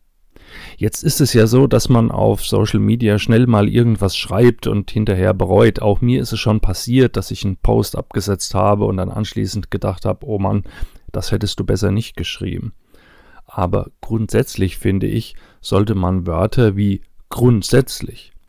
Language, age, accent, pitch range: German, 40-59, German, 100-120 Hz